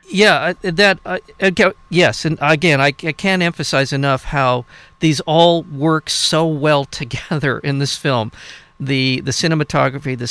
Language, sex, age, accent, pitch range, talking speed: English, male, 50-69, American, 125-155 Hz, 150 wpm